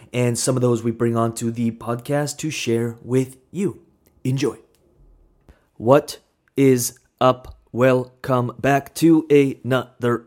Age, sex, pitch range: 30-49, male, 110-135 Hz